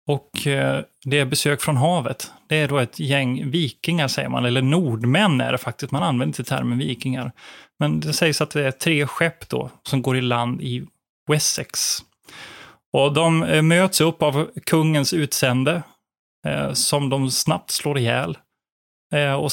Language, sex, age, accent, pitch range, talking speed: Swedish, male, 30-49, native, 125-160 Hz, 160 wpm